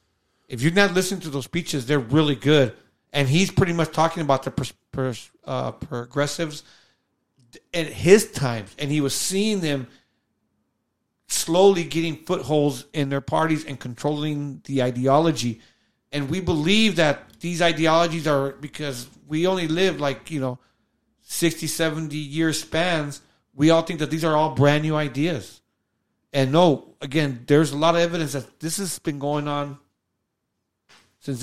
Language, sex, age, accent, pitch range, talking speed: English, male, 40-59, American, 140-160 Hz, 155 wpm